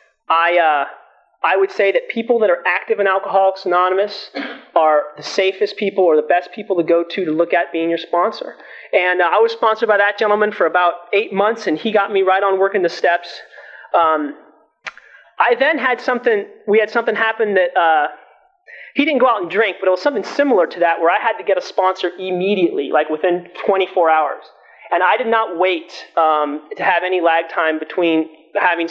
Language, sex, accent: English, male, American